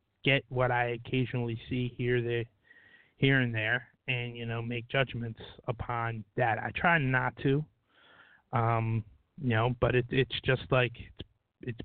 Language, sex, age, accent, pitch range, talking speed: English, male, 30-49, American, 115-130 Hz, 150 wpm